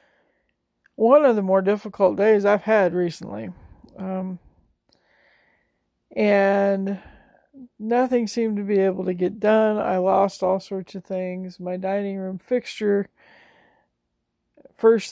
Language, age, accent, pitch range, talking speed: English, 40-59, American, 185-215 Hz, 120 wpm